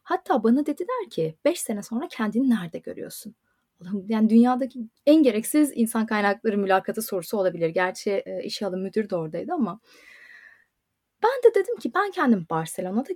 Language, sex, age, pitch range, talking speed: Turkish, female, 30-49, 220-355 Hz, 155 wpm